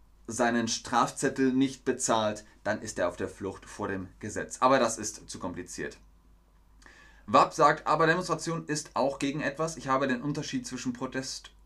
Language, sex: German, male